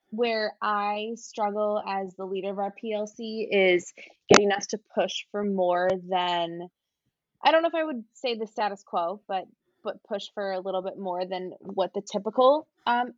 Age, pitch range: 20-39, 185-220 Hz